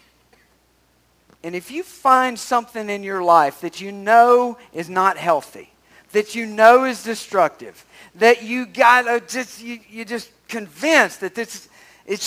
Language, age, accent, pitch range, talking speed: English, 50-69, American, 175-240 Hz, 140 wpm